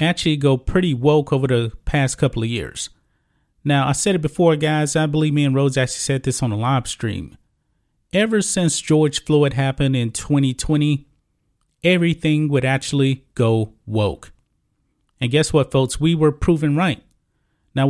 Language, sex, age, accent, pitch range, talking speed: English, male, 30-49, American, 135-165 Hz, 165 wpm